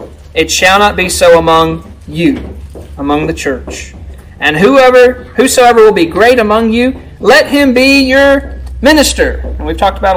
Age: 40-59